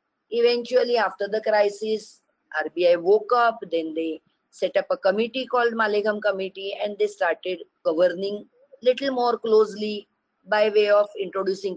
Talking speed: 145 wpm